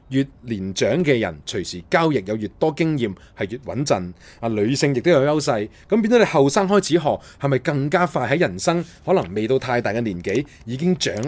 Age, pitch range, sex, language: 30-49, 110-170 Hz, male, Chinese